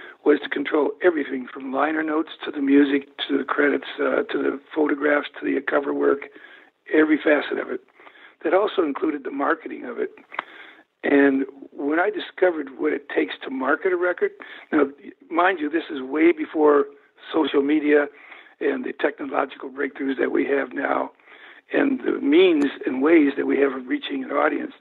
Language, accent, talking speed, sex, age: English, American, 175 wpm, male, 60-79